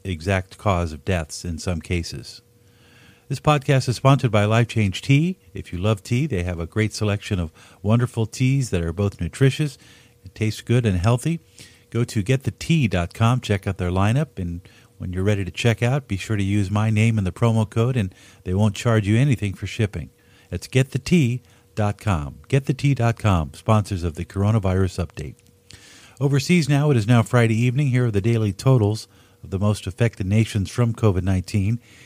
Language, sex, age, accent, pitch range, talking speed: English, male, 50-69, American, 95-120 Hz, 180 wpm